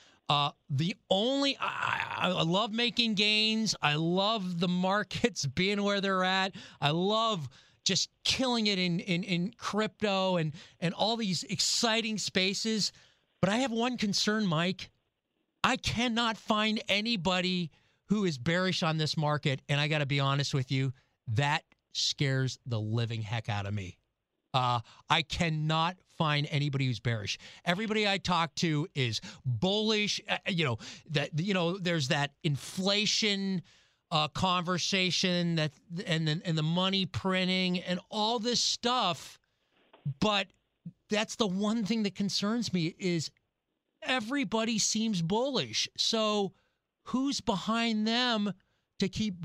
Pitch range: 155-210 Hz